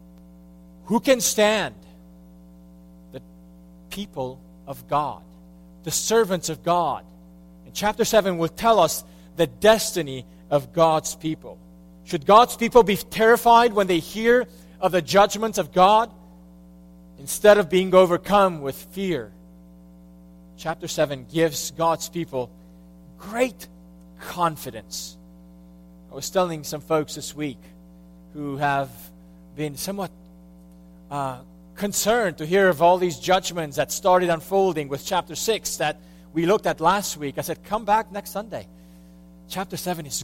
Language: English